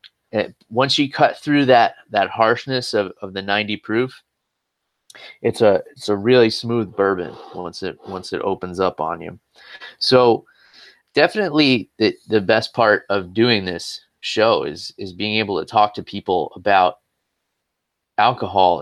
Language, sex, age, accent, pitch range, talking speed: English, male, 20-39, American, 100-130 Hz, 155 wpm